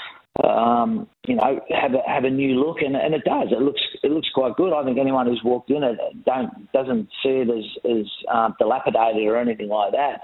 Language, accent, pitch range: English, Australian, 115-140 Hz